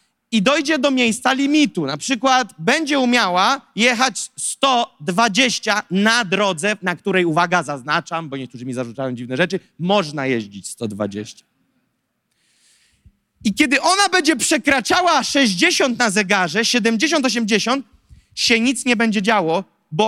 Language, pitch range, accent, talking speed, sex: Polish, 190-265 Hz, native, 125 wpm, male